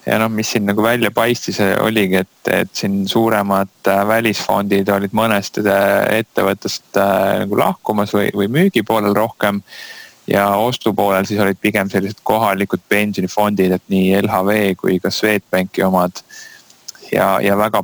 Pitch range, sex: 95-105 Hz, male